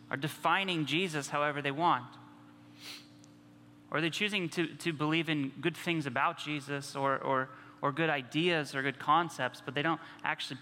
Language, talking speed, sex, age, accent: English, 170 wpm, male, 20-39, American